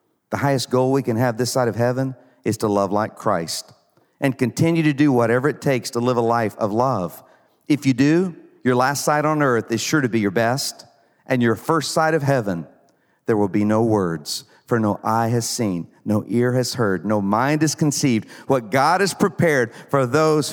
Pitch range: 105-135 Hz